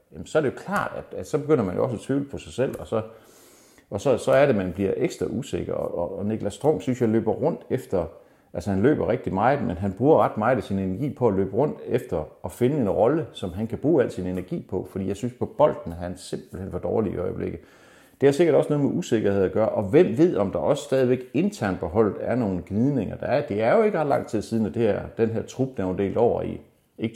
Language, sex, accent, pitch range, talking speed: Danish, male, native, 95-135 Hz, 275 wpm